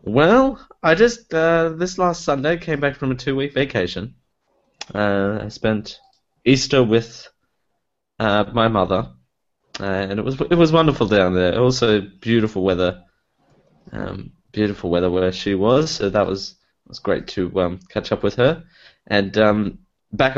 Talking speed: 160 wpm